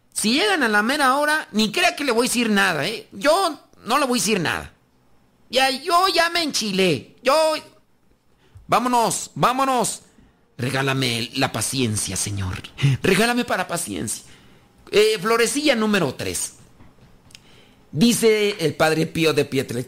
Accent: Mexican